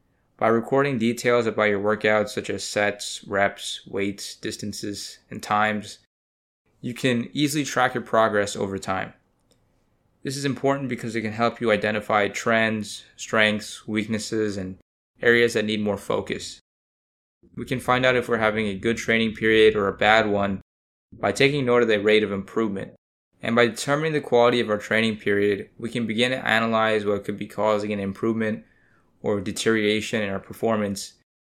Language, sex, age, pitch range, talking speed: English, male, 20-39, 105-120 Hz, 170 wpm